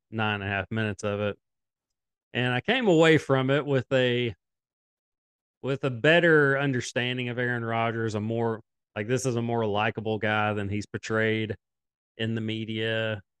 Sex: male